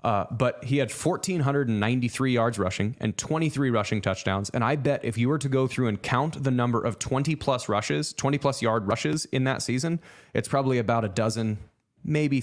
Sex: male